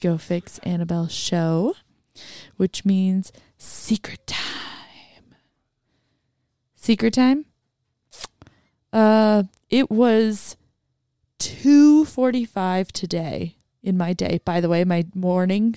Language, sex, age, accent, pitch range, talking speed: English, female, 20-39, American, 165-220 Hz, 90 wpm